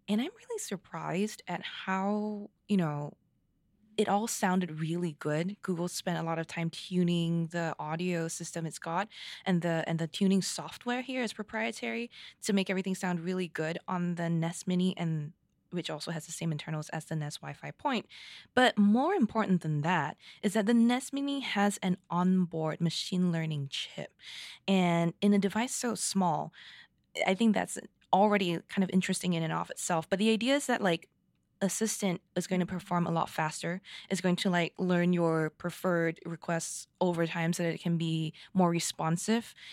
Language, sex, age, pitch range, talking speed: English, female, 20-39, 170-215 Hz, 180 wpm